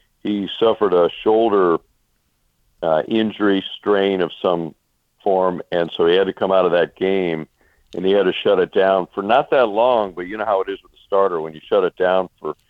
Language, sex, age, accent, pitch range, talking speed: English, male, 60-79, American, 85-100 Hz, 215 wpm